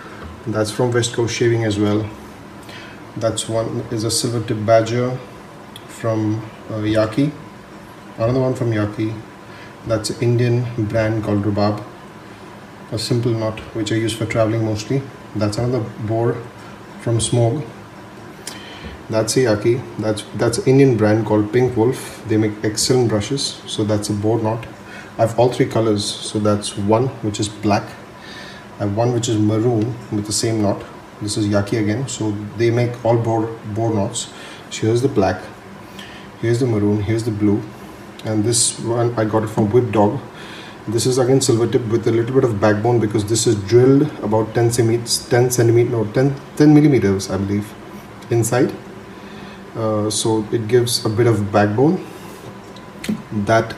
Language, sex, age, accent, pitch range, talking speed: English, male, 30-49, Indian, 105-120 Hz, 165 wpm